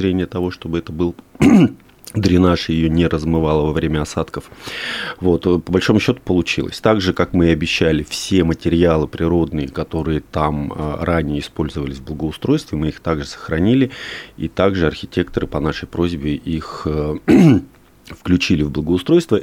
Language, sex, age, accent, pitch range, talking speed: Russian, male, 30-49, native, 80-95 Hz, 135 wpm